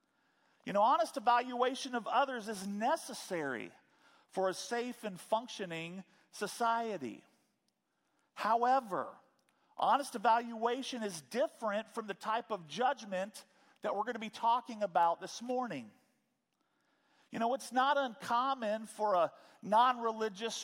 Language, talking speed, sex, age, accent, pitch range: English, 120 wpm, male, 40-59, American, 215-265 Hz